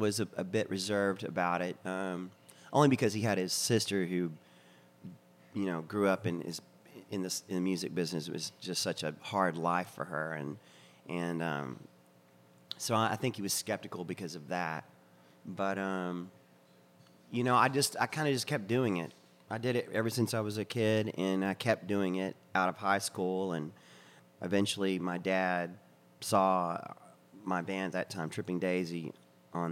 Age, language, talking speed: 30-49, English, 185 wpm